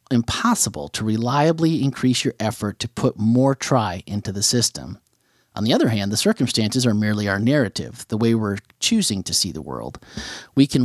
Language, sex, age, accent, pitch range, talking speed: English, male, 40-59, American, 110-140 Hz, 185 wpm